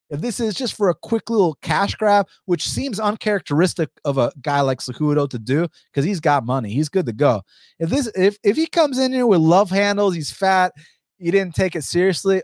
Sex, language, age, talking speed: male, English, 30-49, 220 wpm